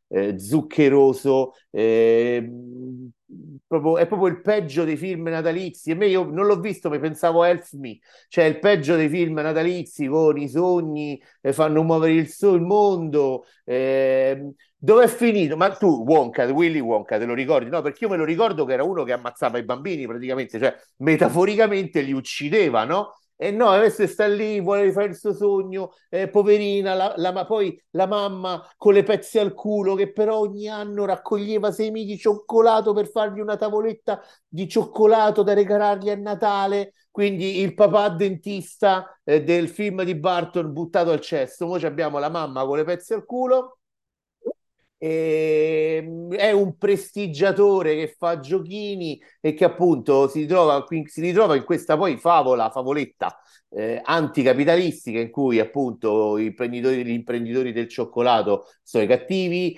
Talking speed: 160 wpm